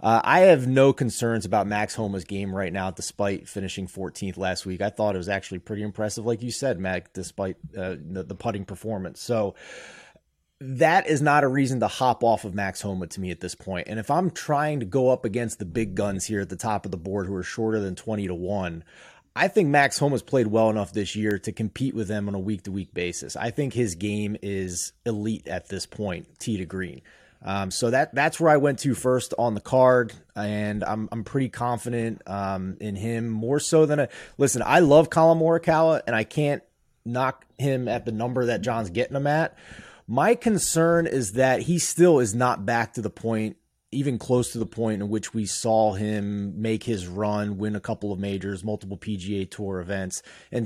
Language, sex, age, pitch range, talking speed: English, male, 30-49, 100-130 Hz, 215 wpm